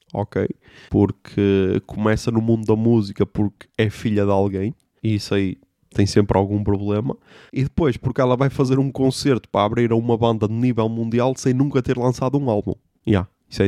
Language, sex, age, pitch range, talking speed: Portuguese, male, 20-39, 105-175 Hz, 200 wpm